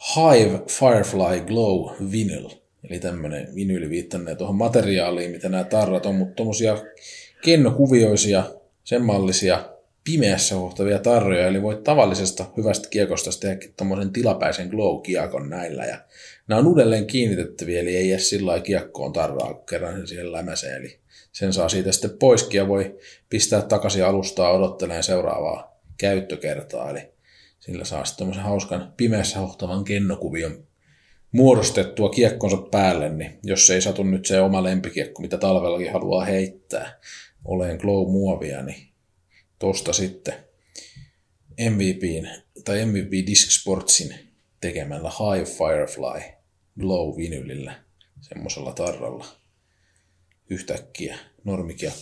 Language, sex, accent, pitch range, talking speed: Finnish, male, native, 90-105 Hz, 115 wpm